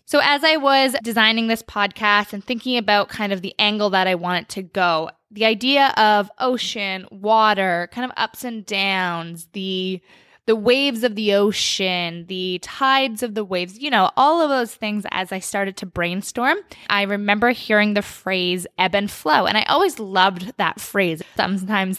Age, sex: 20-39, female